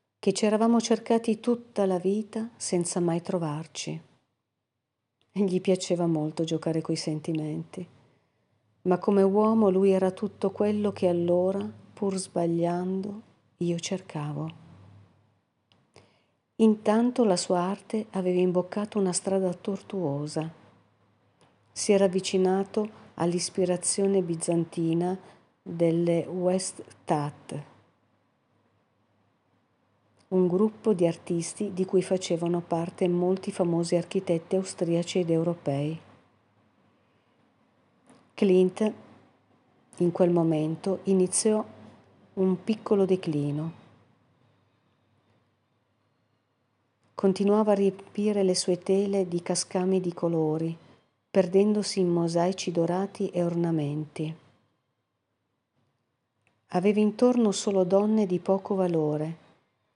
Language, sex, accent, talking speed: Italian, female, native, 90 wpm